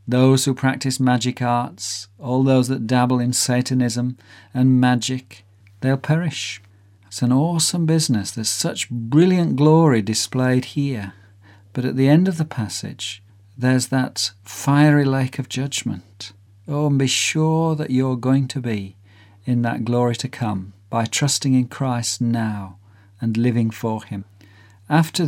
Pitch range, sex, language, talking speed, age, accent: 105-140 Hz, male, English, 145 wpm, 50-69, British